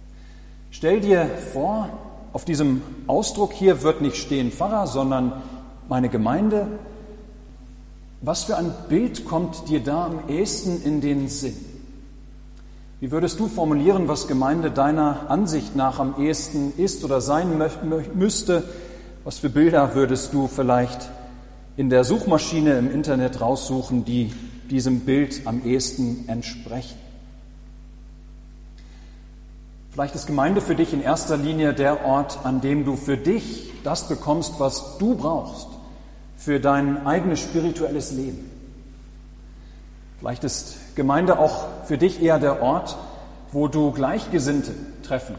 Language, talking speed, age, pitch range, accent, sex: German, 130 wpm, 40-59, 130-160 Hz, German, male